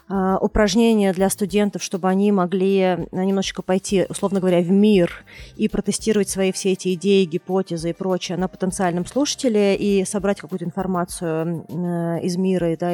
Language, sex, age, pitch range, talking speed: Russian, female, 20-39, 175-200 Hz, 145 wpm